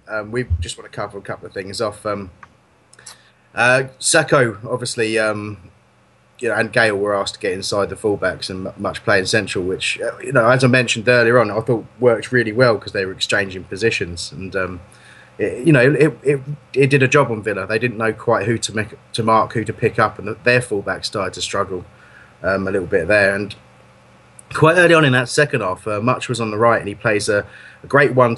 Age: 30-49